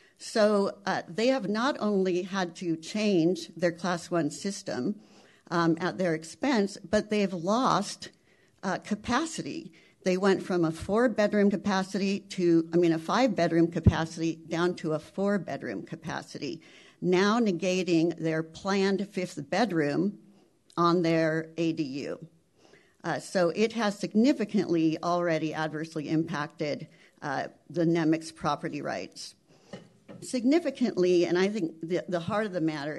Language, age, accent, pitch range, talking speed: English, 60-79, American, 160-200 Hz, 135 wpm